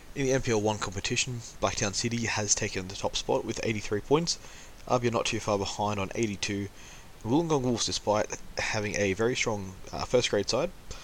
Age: 20-39